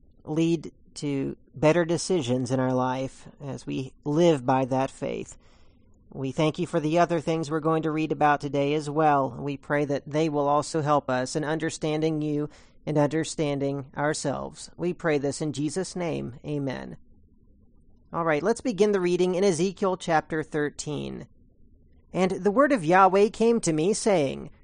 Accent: American